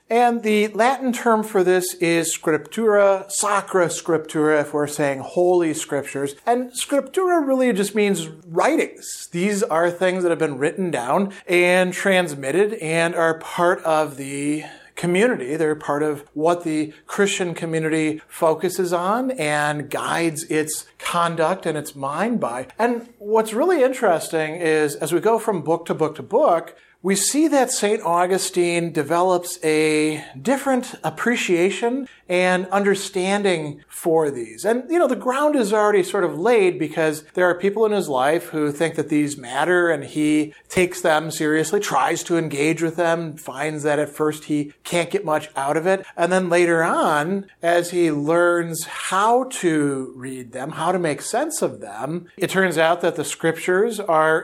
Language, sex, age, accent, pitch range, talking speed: English, male, 40-59, American, 155-200 Hz, 165 wpm